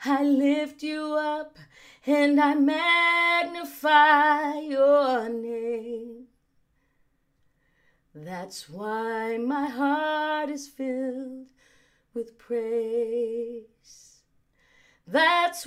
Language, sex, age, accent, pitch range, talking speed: English, female, 30-49, American, 230-300 Hz, 70 wpm